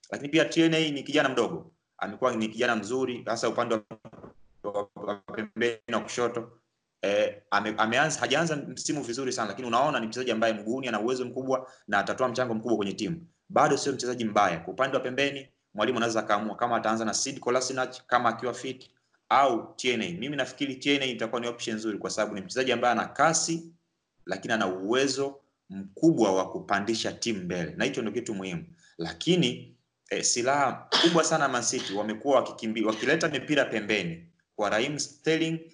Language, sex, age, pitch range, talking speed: Swahili, male, 30-49, 110-140 Hz, 165 wpm